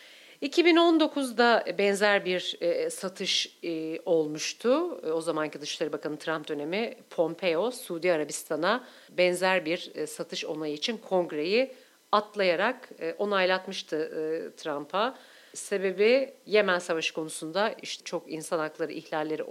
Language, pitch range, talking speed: Turkish, 160-225 Hz, 100 wpm